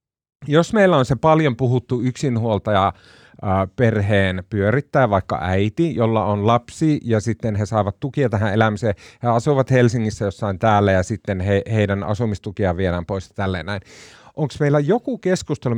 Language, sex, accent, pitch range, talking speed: Finnish, male, native, 100-140 Hz, 155 wpm